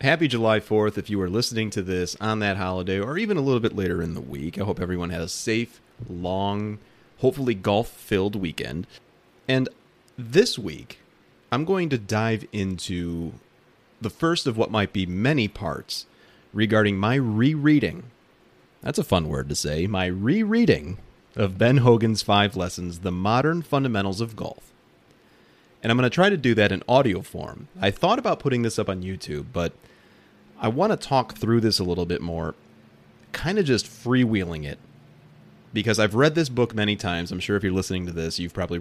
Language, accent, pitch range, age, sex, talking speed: English, American, 90-120 Hz, 30-49, male, 185 wpm